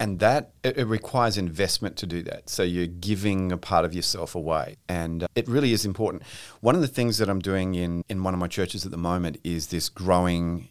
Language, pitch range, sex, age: English, 90-105 Hz, male, 40-59